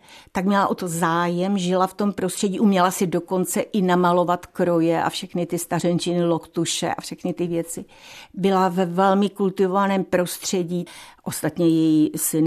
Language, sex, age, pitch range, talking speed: Czech, female, 50-69, 170-195 Hz, 155 wpm